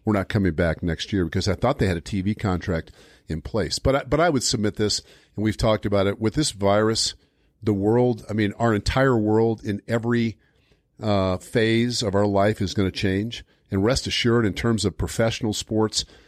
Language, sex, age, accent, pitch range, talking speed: English, male, 50-69, American, 95-120 Hz, 210 wpm